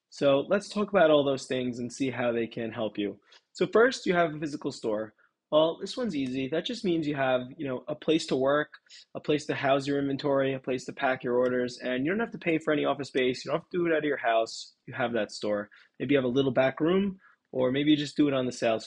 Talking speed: 280 wpm